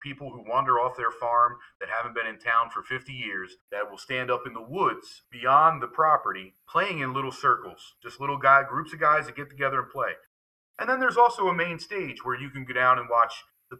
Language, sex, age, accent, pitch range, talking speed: English, male, 40-59, American, 110-140 Hz, 235 wpm